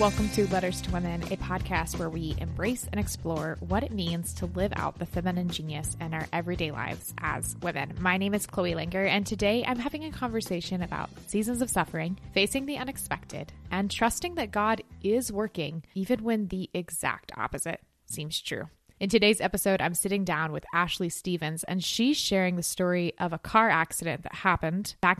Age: 20-39